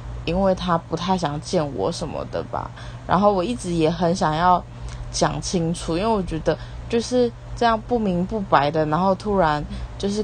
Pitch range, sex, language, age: 120-190 Hz, female, Chinese, 20-39